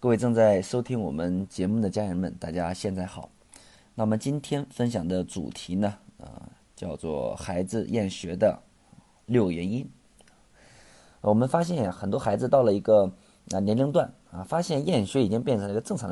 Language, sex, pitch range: Chinese, male, 95-140 Hz